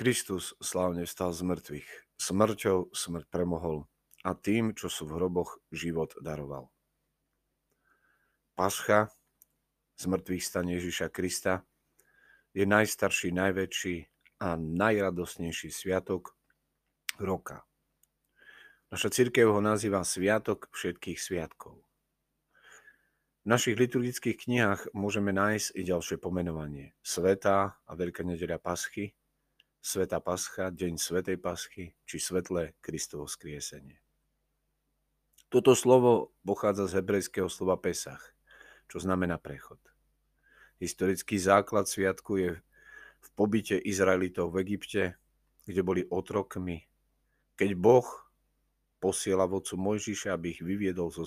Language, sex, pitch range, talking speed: Slovak, male, 85-105 Hz, 105 wpm